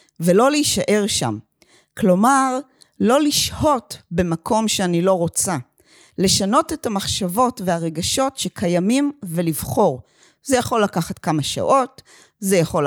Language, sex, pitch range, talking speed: Hebrew, female, 165-230 Hz, 105 wpm